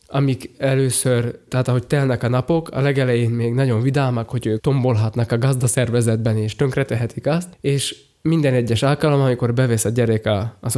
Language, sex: Hungarian, male